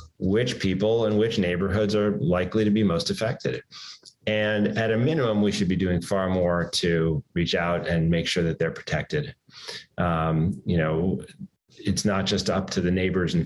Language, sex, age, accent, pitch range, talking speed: English, male, 30-49, American, 85-105 Hz, 185 wpm